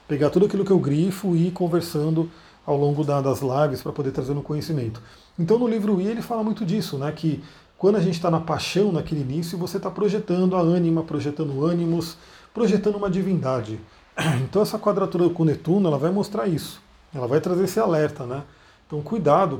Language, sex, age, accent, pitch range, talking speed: Portuguese, male, 40-59, Brazilian, 140-185 Hz, 195 wpm